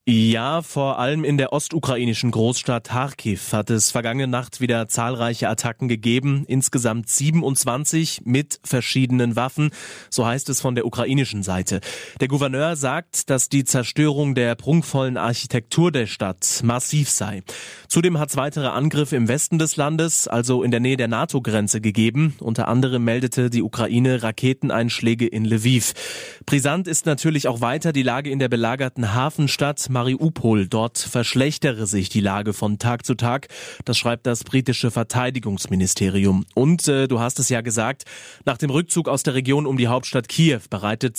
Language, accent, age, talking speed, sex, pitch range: German, German, 30-49, 160 wpm, male, 115-140 Hz